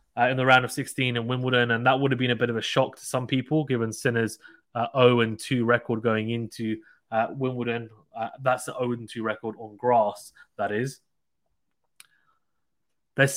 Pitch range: 120-155 Hz